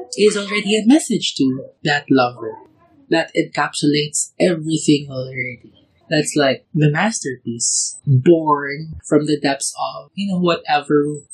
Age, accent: 20-39, Filipino